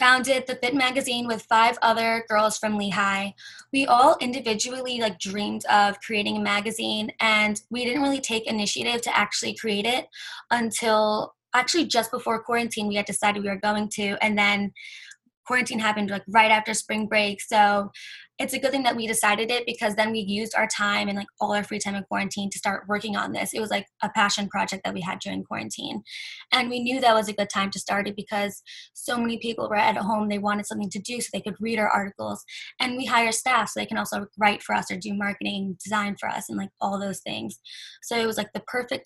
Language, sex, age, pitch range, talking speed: English, female, 10-29, 205-240 Hz, 225 wpm